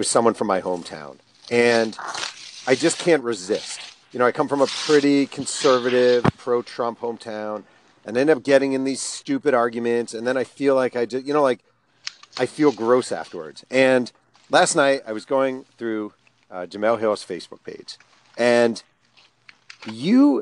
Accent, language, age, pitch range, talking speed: American, English, 40-59, 120-165 Hz, 165 wpm